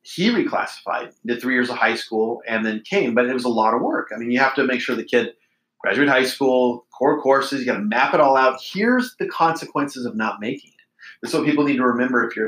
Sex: male